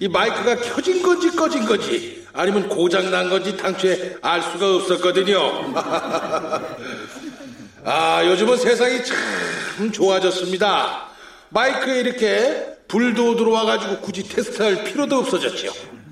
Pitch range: 210-345 Hz